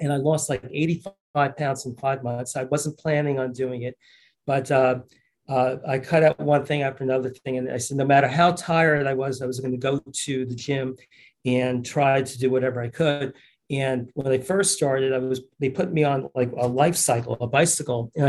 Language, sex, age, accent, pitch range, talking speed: English, male, 40-59, American, 130-145 Hz, 225 wpm